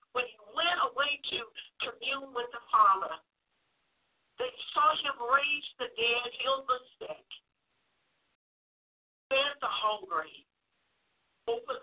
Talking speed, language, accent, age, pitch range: 110 wpm, English, American, 50-69, 245-360 Hz